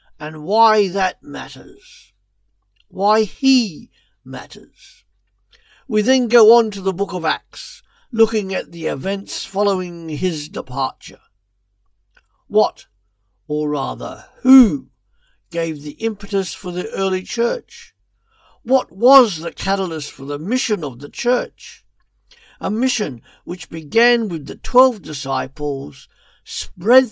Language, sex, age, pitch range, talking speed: English, male, 60-79, 145-220 Hz, 115 wpm